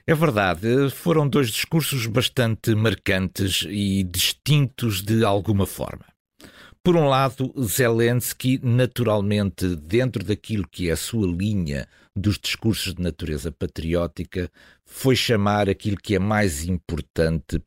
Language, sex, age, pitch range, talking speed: Portuguese, male, 50-69, 90-130 Hz, 120 wpm